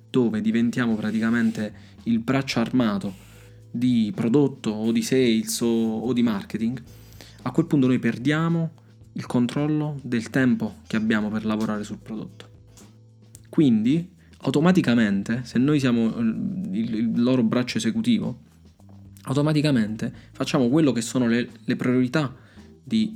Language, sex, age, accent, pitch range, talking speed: Italian, male, 20-39, native, 110-130 Hz, 125 wpm